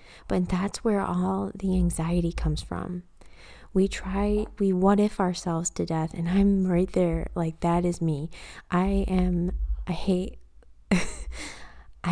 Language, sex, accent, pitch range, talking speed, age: English, female, American, 160-210 Hz, 140 wpm, 20-39